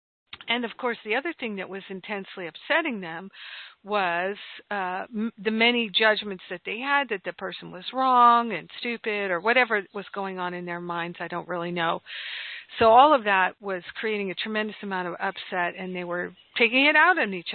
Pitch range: 185-230 Hz